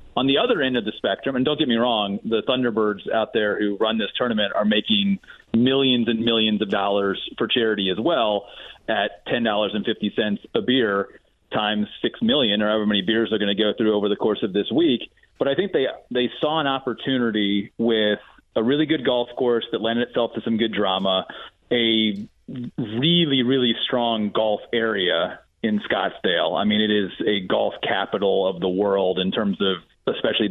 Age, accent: 30-49, American